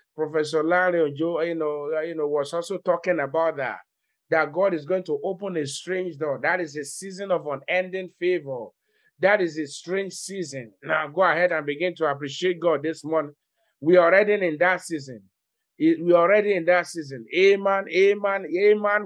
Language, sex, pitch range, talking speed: English, male, 135-180 Hz, 185 wpm